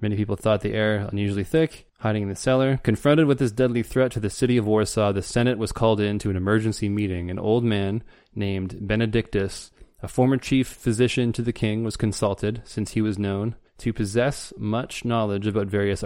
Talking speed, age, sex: 200 wpm, 20-39, male